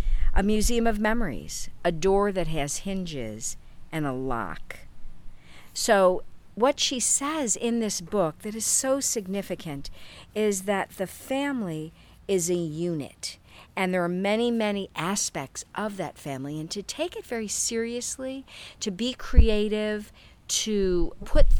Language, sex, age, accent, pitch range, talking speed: English, female, 50-69, American, 160-215 Hz, 140 wpm